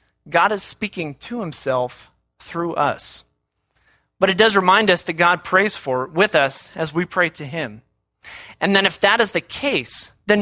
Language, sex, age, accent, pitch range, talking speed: English, male, 30-49, American, 155-205 Hz, 180 wpm